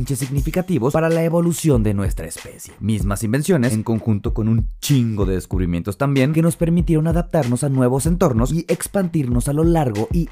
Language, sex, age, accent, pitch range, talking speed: Spanish, male, 30-49, Mexican, 105-145 Hz, 175 wpm